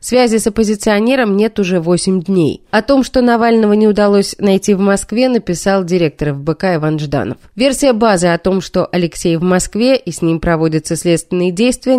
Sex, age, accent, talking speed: female, 20-39, native, 175 wpm